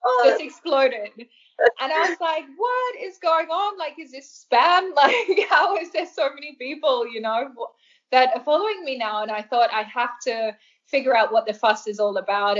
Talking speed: 195 wpm